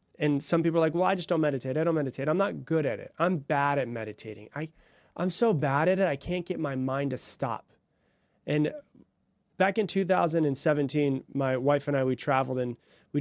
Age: 30-49